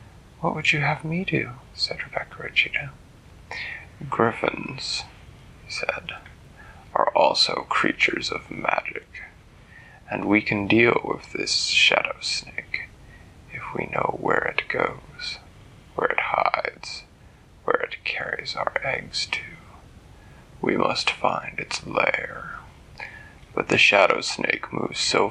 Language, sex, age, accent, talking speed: English, male, 30-49, American, 120 wpm